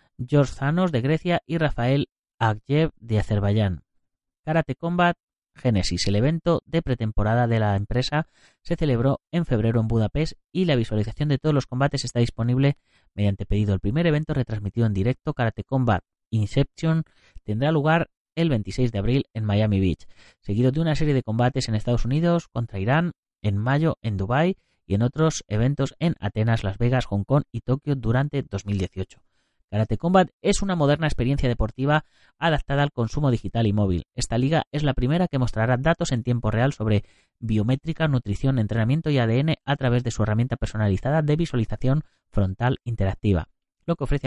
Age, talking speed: 30-49, 170 wpm